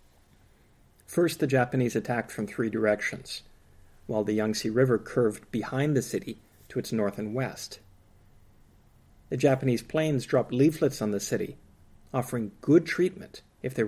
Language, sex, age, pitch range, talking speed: English, male, 50-69, 105-135 Hz, 145 wpm